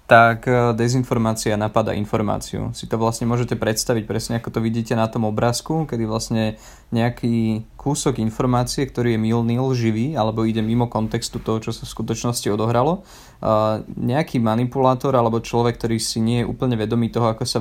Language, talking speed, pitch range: Slovak, 165 wpm, 110-125 Hz